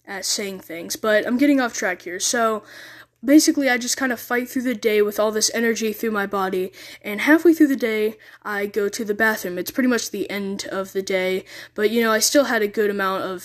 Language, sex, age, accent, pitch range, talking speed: English, female, 10-29, American, 195-240 Hz, 240 wpm